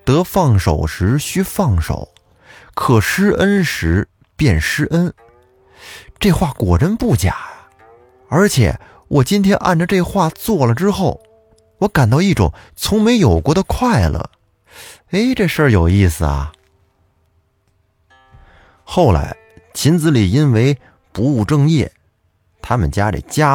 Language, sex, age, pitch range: Chinese, male, 30-49, 95-150 Hz